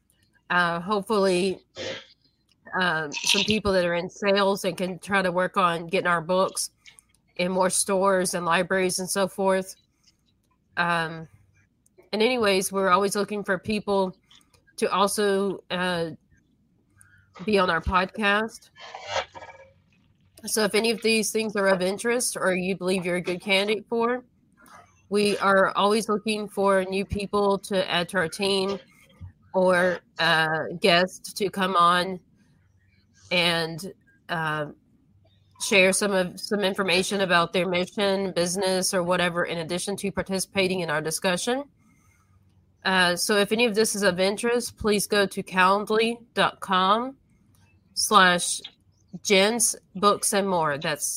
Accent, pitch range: American, 175-205 Hz